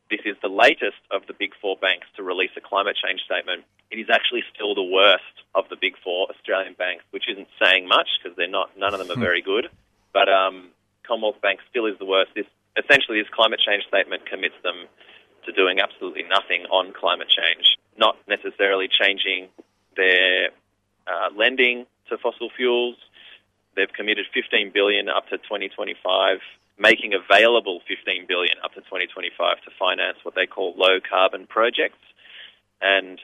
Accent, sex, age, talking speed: Australian, male, 30-49, 165 wpm